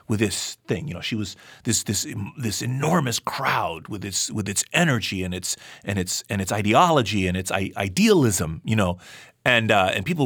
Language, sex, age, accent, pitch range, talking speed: English, male, 40-59, American, 105-150 Hz, 200 wpm